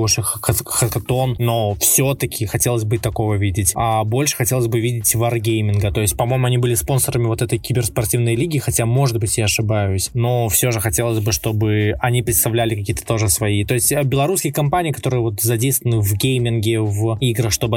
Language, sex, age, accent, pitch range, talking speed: Russian, male, 20-39, native, 110-130 Hz, 175 wpm